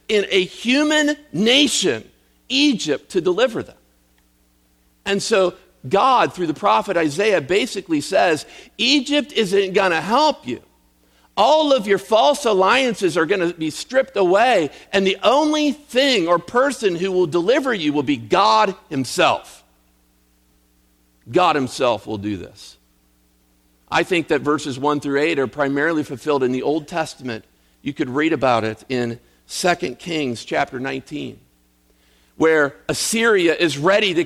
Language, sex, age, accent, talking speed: English, male, 50-69, American, 145 wpm